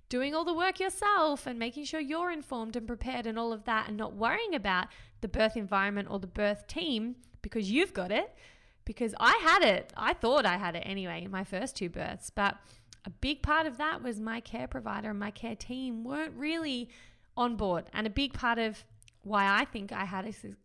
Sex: female